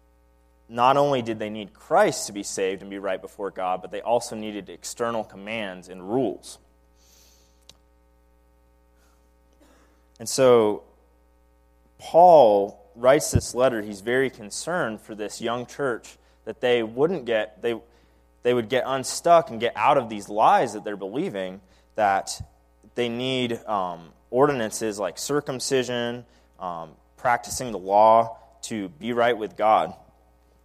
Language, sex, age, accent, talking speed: English, male, 20-39, American, 135 wpm